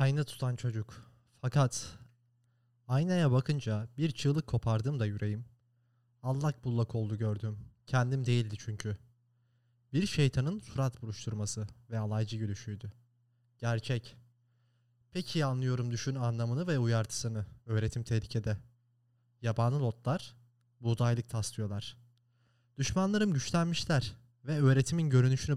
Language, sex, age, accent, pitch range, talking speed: Turkish, male, 30-49, native, 115-135 Hz, 100 wpm